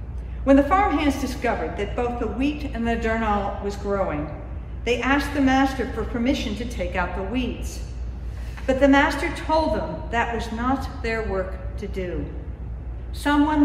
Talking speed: 165 wpm